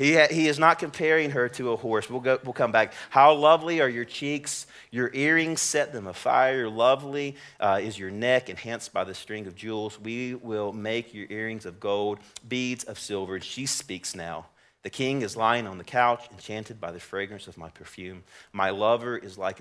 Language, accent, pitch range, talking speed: English, American, 95-125 Hz, 200 wpm